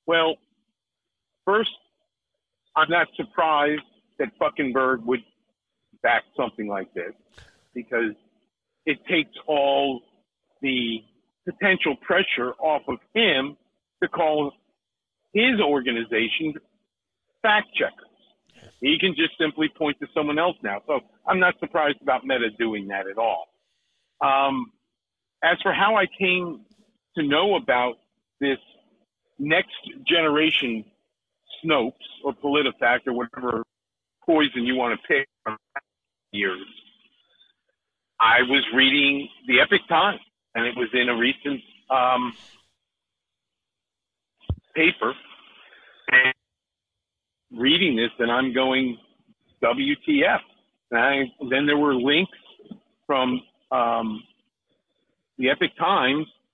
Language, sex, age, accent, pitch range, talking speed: English, male, 50-69, American, 125-175 Hz, 110 wpm